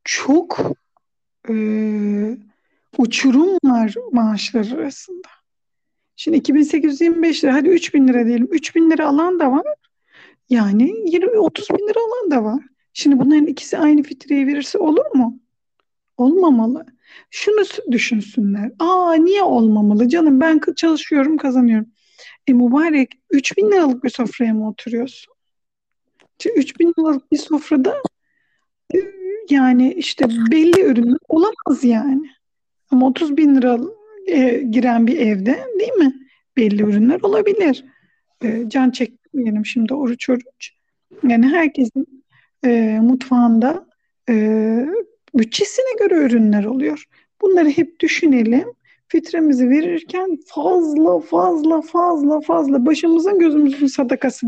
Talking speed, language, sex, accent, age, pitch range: 110 wpm, Turkish, female, native, 50-69, 245-335 Hz